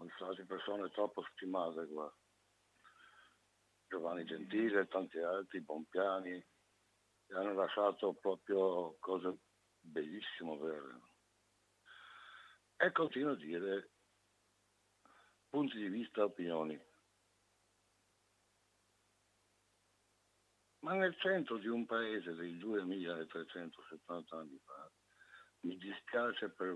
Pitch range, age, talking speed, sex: 90-110 Hz, 60-79, 90 wpm, male